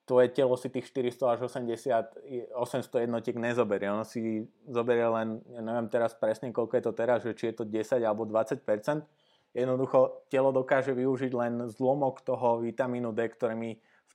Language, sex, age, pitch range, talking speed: Slovak, male, 20-39, 105-125 Hz, 175 wpm